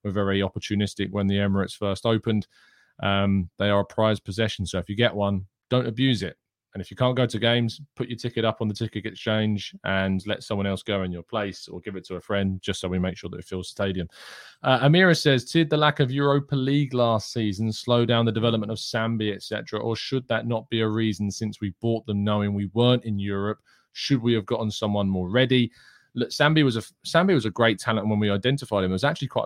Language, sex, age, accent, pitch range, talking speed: English, male, 20-39, British, 100-115 Hz, 240 wpm